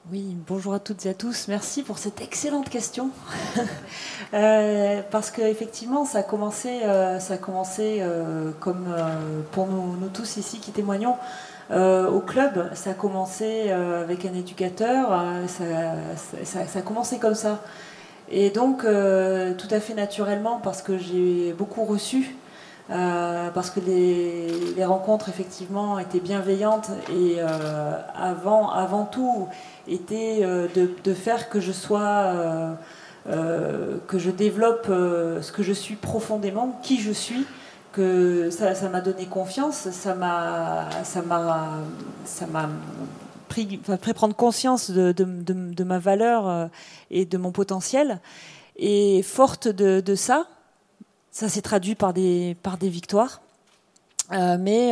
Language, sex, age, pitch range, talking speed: French, female, 30-49, 180-215 Hz, 155 wpm